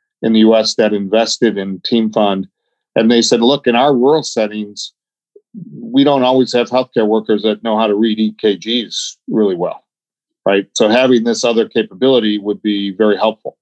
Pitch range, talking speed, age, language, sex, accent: 105-115 Hz, 170 wpm, 40-59, English, male, American